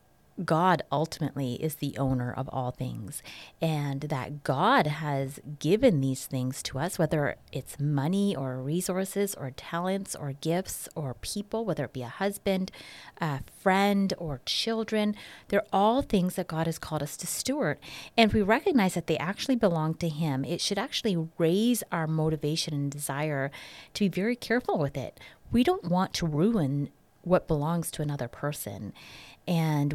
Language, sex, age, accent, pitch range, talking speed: English, female, 30-49, American, 145-190 Hz, 165 wpm